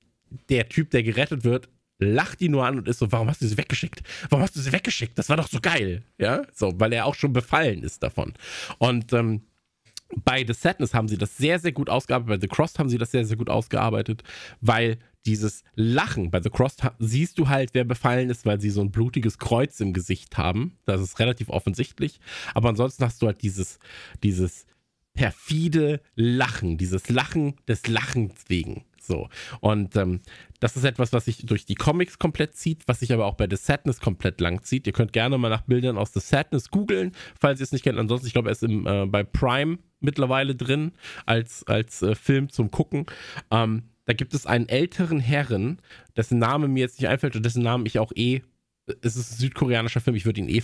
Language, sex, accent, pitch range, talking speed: German, male, German, 110-135 Hz, 210 wpm